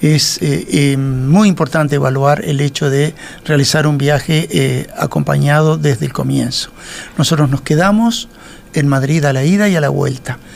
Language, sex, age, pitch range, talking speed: Spanish, male, 60-79, 140-165 Hz, 165 wpm